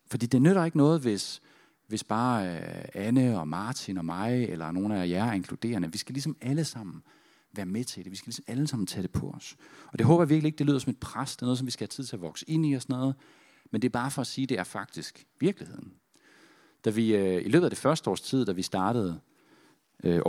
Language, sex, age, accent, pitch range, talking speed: Danish, male, 40-59, native, 110-150 Hz, 270 wpm